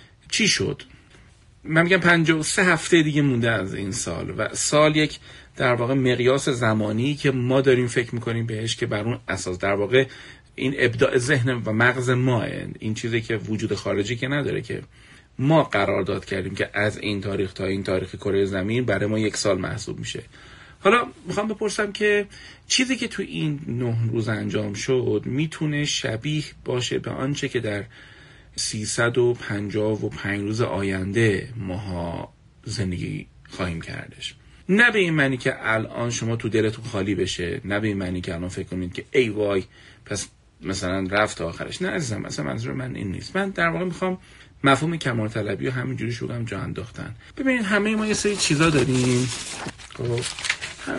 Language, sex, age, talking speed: Persian, male, 40-59, 170 wpm